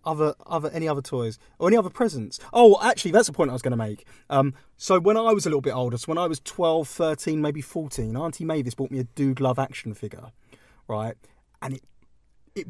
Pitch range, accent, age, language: 120-155 Hz, British, 20-39, English